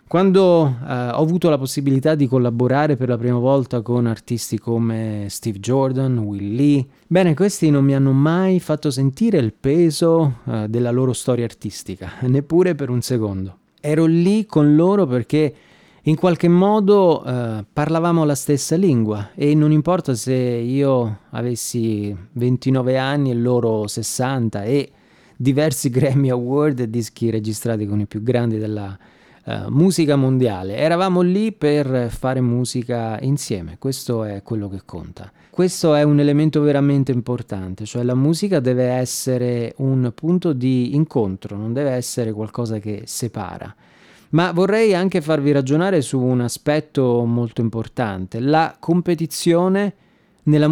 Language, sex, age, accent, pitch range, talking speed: Italian, male, 30-49, native, 115-155 Hz, 140 wpm